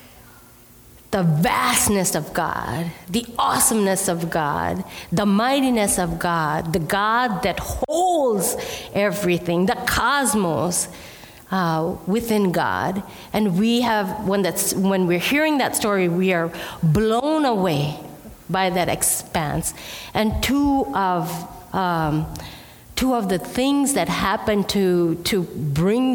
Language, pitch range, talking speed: English, 175-220 Hz, 120 wpm